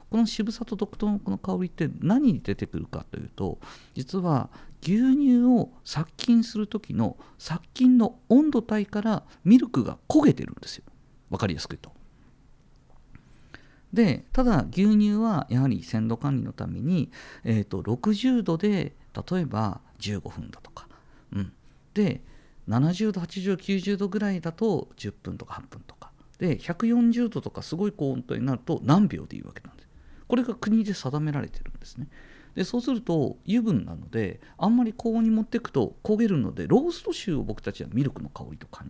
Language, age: Japanese, 50-69